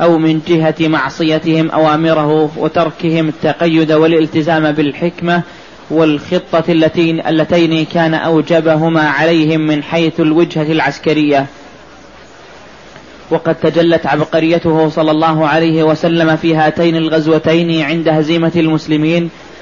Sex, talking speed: male, 95 wpm